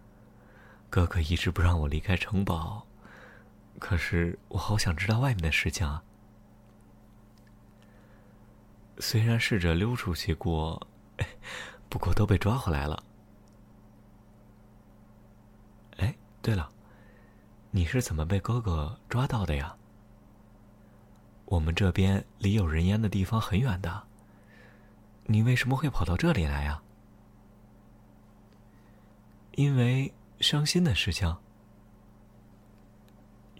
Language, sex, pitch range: Chinese, male, 95-110 Hz